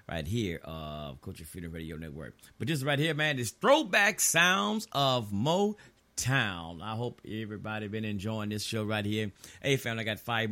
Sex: male